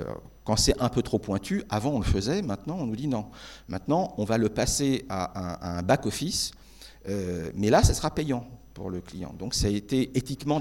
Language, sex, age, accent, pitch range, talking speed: French, male, 50-69, French, 100-130 Hz, 210 wpm